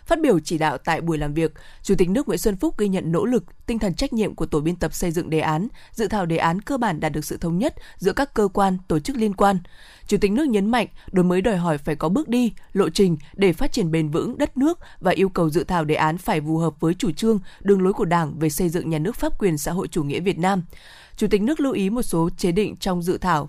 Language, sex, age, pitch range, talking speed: Vietnamese, female, 20-39, 170-225 Hz, 290 wpm